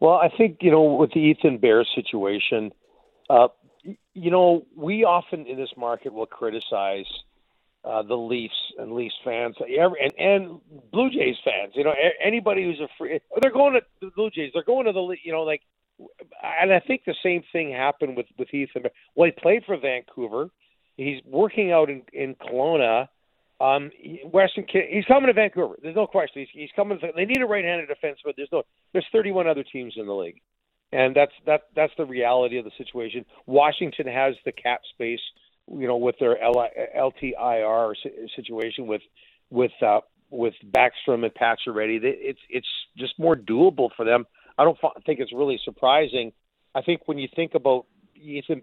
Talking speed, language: 180 wpm, English